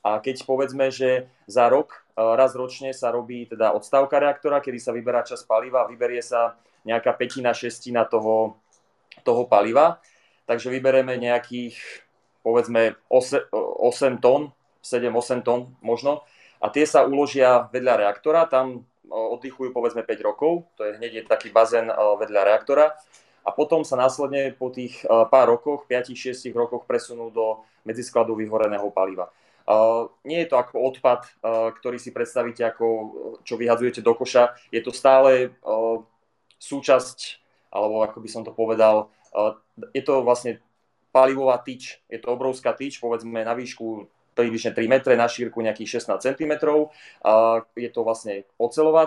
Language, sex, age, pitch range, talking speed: Slovak, male, 30-49, 115-130 Hz, 150 wpm